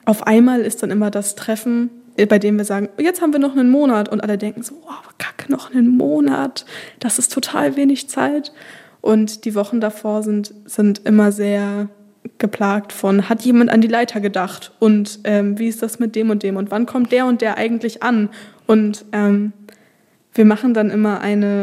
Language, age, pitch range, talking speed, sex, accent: German, 20-39, 205-235 Hz, 195 wpm, female, German